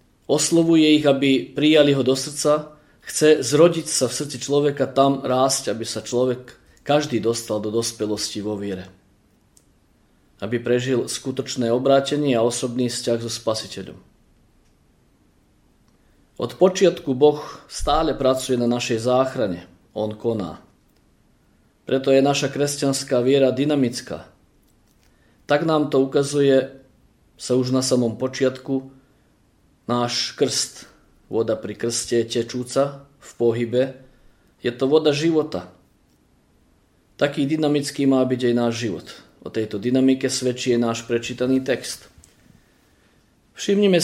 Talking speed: 115 wpm